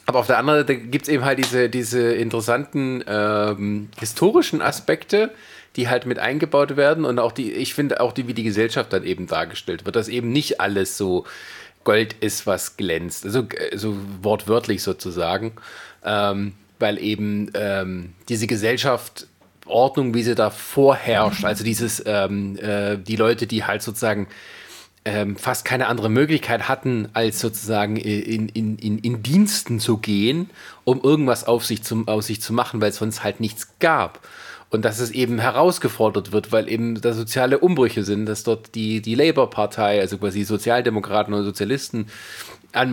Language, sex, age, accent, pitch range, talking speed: German, male, 30-49, German, 105-125 Hz, 165 wpm